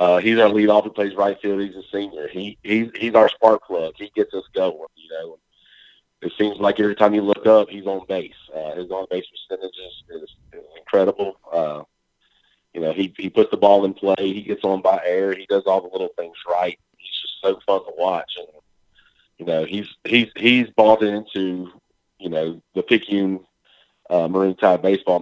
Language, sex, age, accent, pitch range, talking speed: English, male, 30-49, American, 90-115 Hz, 205 wpm